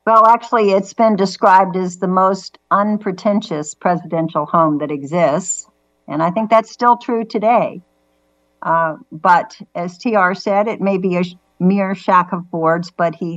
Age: 60-79